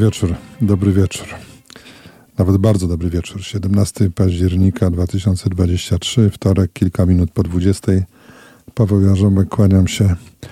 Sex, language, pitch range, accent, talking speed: male, Polish, 90-105 Hz, native, 110 wpm